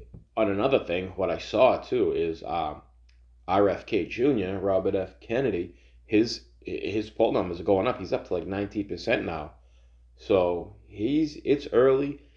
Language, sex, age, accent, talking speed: English, male, 20-39, American, 155 wpm